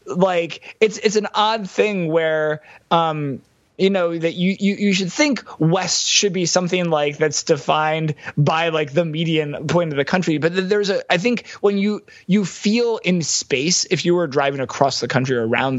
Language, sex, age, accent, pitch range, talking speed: English, male, 20-39, American, 145-180 Hz, 195 wpm